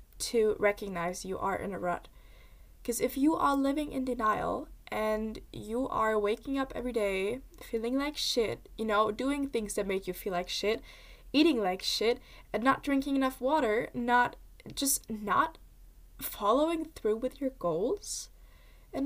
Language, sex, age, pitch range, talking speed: English, female, 10-29, 215-270 Hz, 160 wpm